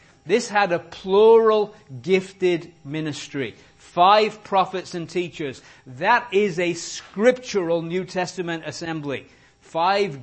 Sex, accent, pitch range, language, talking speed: male, British, 160-210 Hz, English, 105 wpm